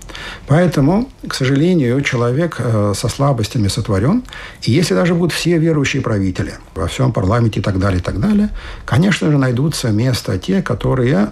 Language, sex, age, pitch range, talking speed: Russian, male, 60-79, 105-140 Hz, 160 wpm